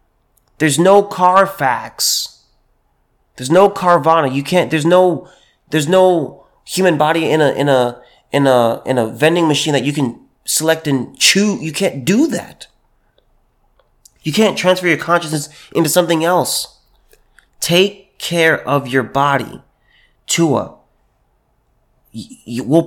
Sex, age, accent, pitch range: male, 30-49, American, 130-165 Hz